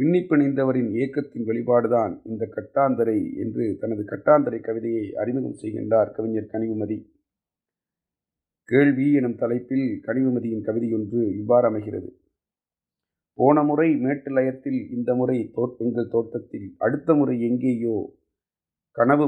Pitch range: 120-140 Hz